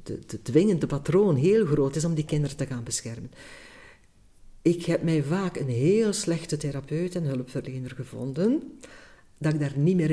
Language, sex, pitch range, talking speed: Dutch, female, 130-190 Hz, 180 wpm